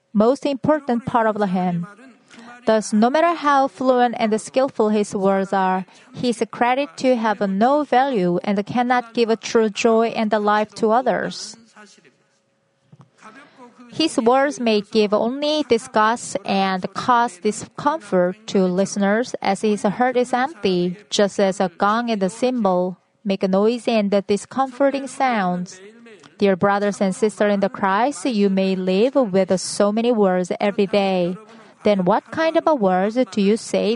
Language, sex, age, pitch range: Korean, female, 30-49, 195-240 Hz